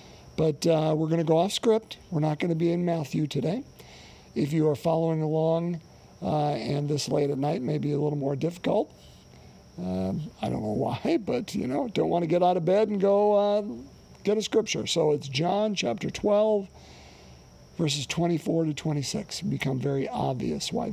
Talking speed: 185 wpm